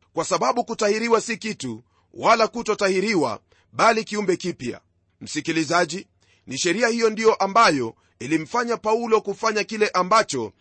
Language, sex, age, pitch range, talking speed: Swahili, male, 40-59, 185-225 Hz, 120 wpm